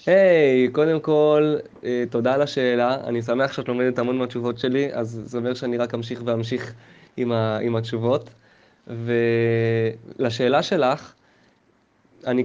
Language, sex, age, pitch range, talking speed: English, male, 20-39, 120-140 Hz, 115 wpm